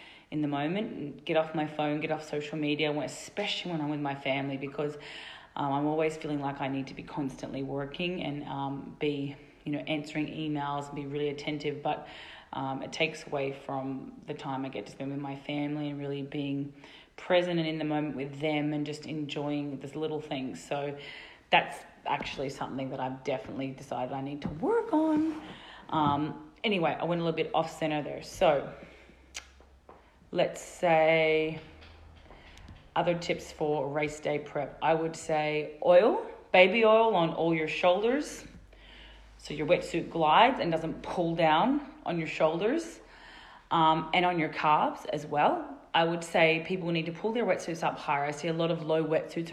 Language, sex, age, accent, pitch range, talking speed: English, female, 30-49, Australian, 140-170 Hz, 180 wpm